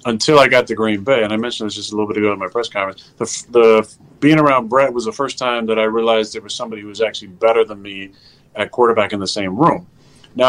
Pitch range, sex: 105-125 Hz, male